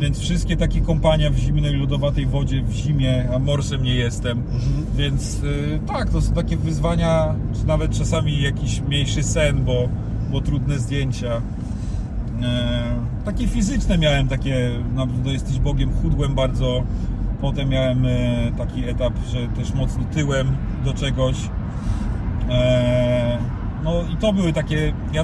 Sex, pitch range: male, 115-145 Hz